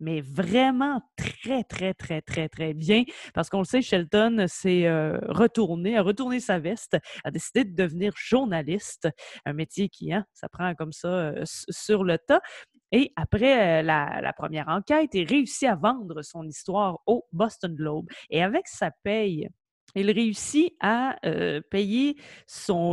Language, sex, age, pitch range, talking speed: French, female, 30-49, 165-225 Hz, 165 wpm